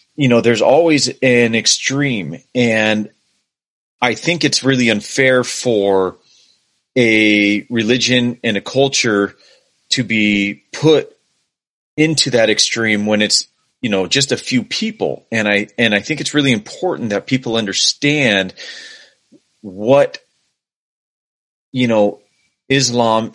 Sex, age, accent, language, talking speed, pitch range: male, 30-49, American, English, 120 wpm, 105-140 Hz